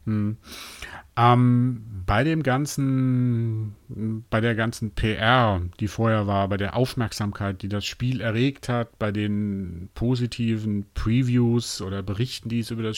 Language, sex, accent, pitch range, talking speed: German, male, German, 105-130 Hz, 140 wpm